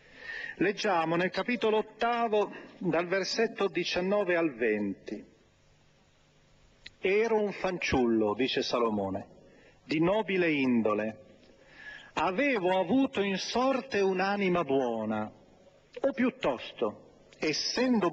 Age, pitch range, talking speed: 40-59, 170-235 Hz, 85 wpm